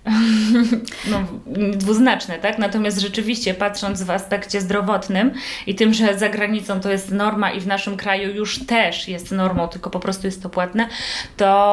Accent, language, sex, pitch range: native, Polish, female, 190-245 Hz